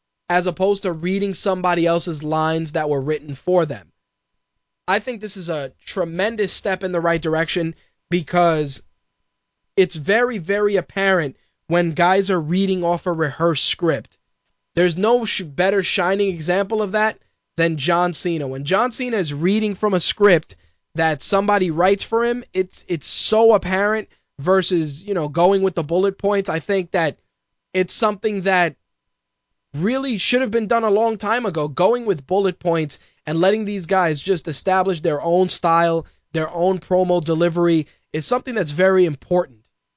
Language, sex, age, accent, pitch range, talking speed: English, male, 20-39, American, 165-195 Hz, 160 wpm